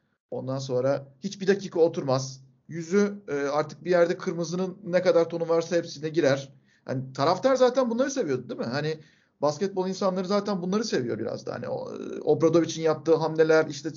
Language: Turkish